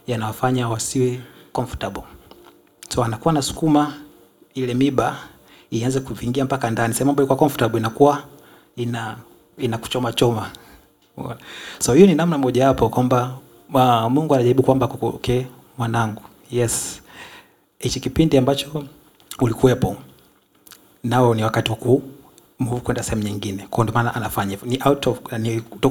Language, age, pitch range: English, 30-49, 115-130 Hz